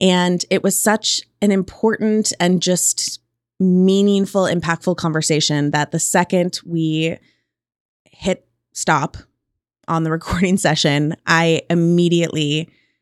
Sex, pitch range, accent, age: female, 160-190 Hz, American, 20-39